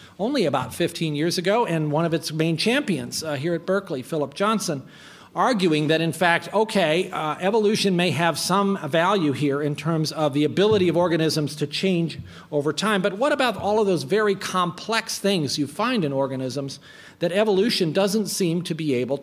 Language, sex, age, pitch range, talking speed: English, male, 50-69, 150-195 Hz, 185 wpm